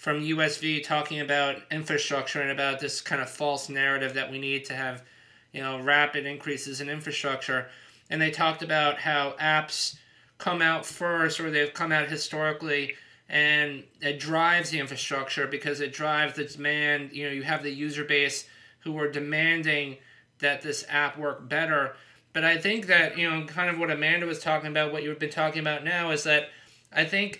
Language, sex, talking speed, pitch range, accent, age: English, male, 185 wpm, 145-160 Hz, American, 30-49